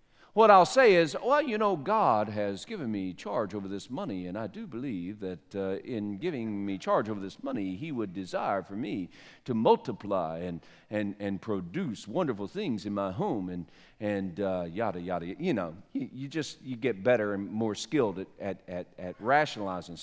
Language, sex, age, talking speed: English, male, 50-69, 195 wpm